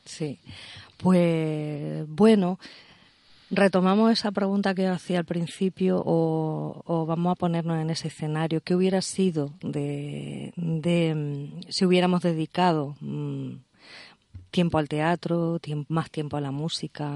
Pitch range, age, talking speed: 145-180 Hz, 40-59, 125 wpm